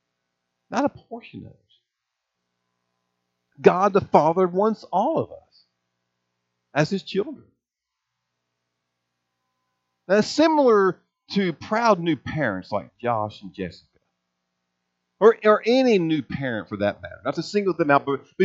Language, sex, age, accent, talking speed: English, male, 50-69, American, 125 wpm